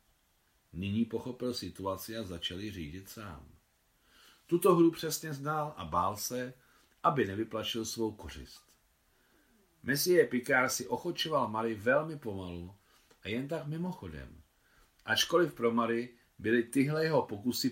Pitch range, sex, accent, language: 95-125 Hz, male, native, Czech